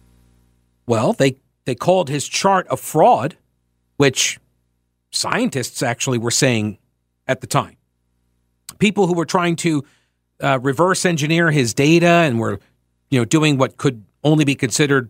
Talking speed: 145 wpm